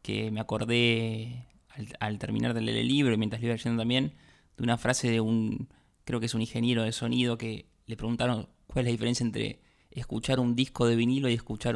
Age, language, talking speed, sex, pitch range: 20-39, Spanish, 220 wpm, male, 115-125 Hz